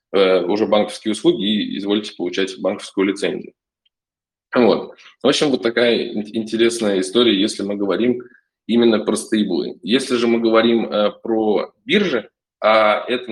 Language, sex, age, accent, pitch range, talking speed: Russian, male, 20-39, native, 100-125 Hz, 130 wpm